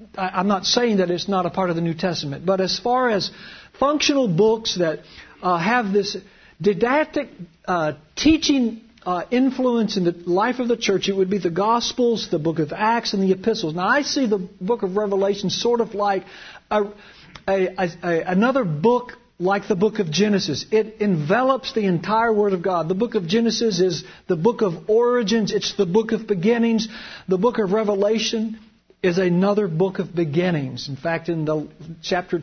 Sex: male